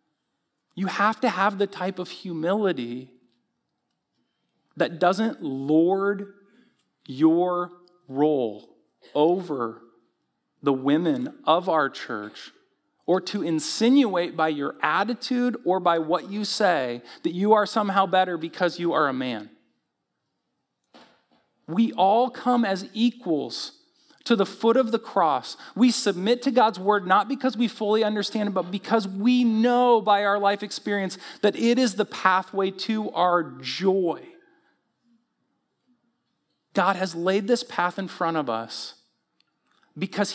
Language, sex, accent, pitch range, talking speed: English, male, American, 165-225 Hz, 130 wpm